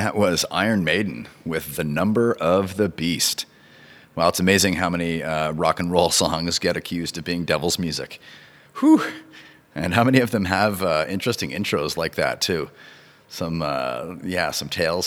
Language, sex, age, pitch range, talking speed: English, male, 30-49, 80-105 Hz, 180 wpm